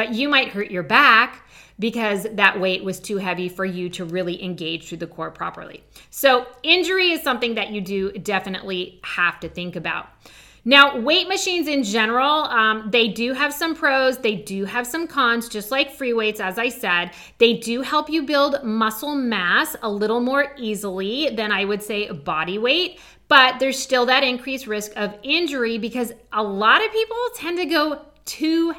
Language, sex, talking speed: English, female, 190 wpm